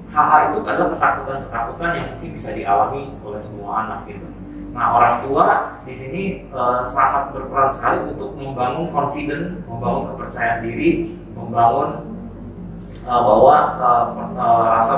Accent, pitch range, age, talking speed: native, 110-140 Hz, 30-49, 125 wpm